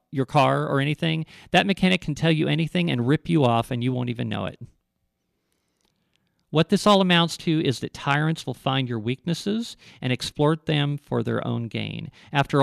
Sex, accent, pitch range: male, American, 130-170 Hz